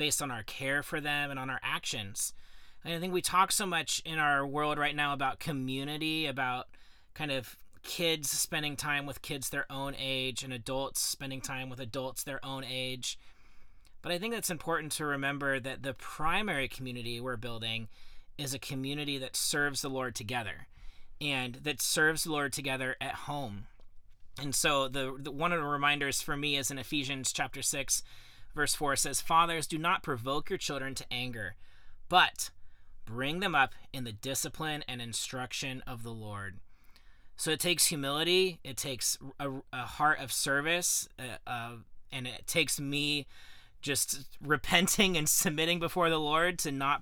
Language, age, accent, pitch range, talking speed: English, 30-49, American, 125-150 Hz, 175 wpm